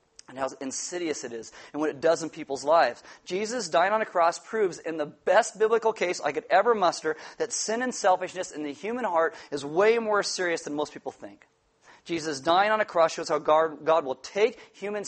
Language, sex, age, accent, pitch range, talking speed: English, male, 40-59, American, 155-190 Hz, 220 wpm